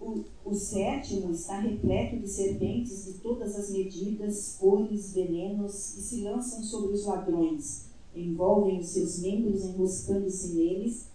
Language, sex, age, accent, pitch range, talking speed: Portuguese, female, 40-59, Brazilian, 185-220 Hz, 135 wpm